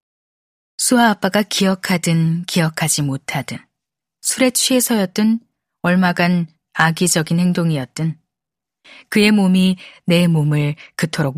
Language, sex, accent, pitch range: Korean, female, native, 160-215 Hz